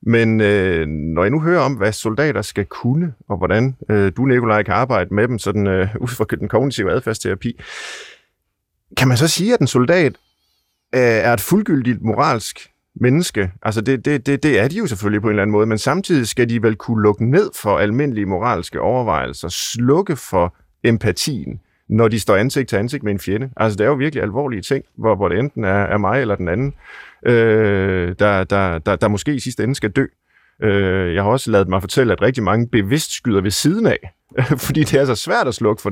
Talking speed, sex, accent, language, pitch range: 200 wpm, male, native, Danish, 100-130 Hz